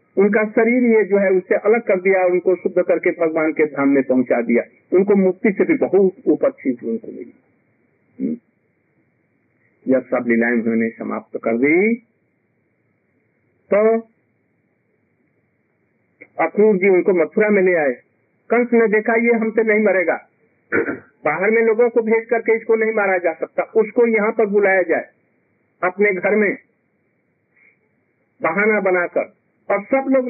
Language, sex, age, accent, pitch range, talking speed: Hindi, male, 50-69, native, 180-225 Hz, 145 wpm